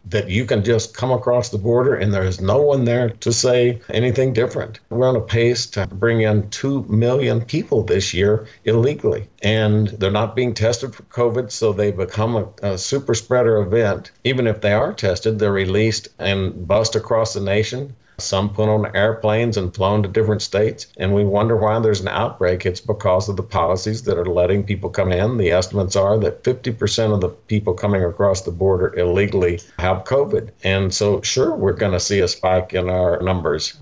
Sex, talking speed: male, 200 wpm